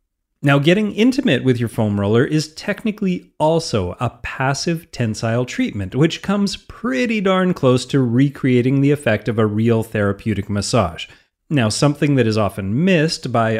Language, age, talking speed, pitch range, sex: English, 30-49, 155 wpm, 110-150 Hz, male